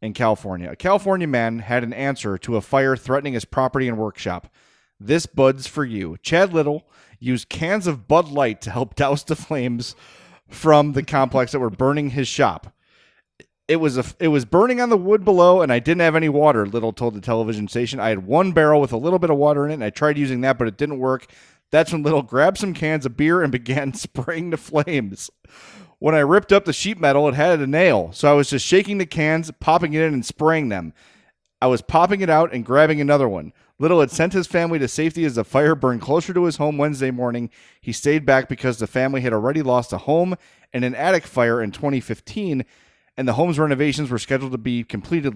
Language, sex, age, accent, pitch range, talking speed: English, male, 30-49, American, 125-160 Hz, 225 wpm